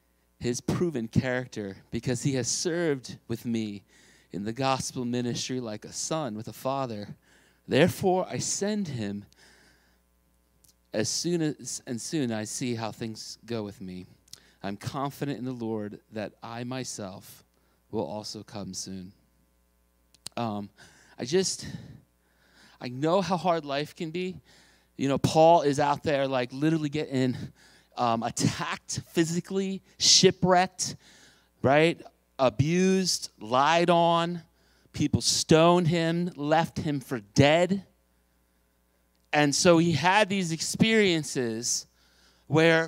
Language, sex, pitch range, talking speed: English, male, 110-170 Hz, 125 wpm